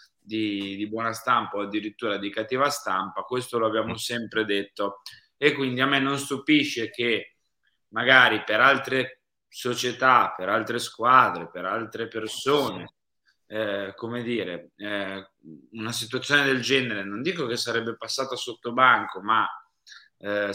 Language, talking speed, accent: Italian, 140 wpm, native